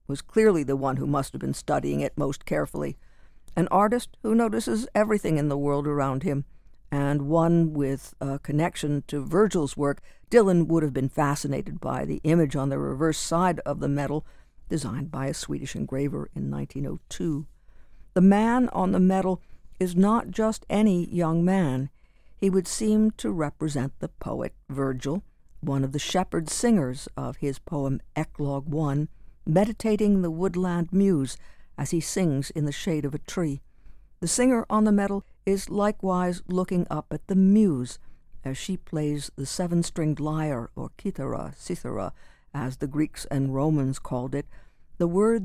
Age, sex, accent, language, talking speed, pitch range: 60-79, female, American, English, 165 wpm, 140-185 Hz